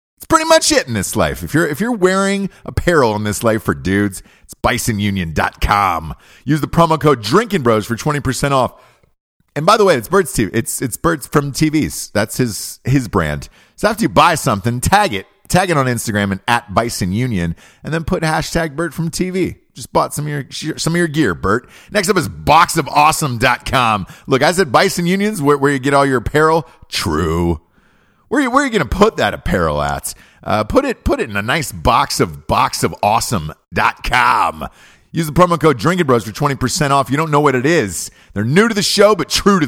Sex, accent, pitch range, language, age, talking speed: male, American, 100-165 Hz, English, 40-59, 205 wpm